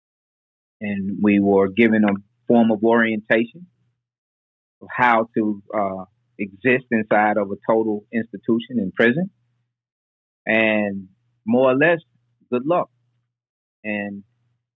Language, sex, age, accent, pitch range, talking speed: English, male, 30-49, American, 110-120 Hz, 110 wpm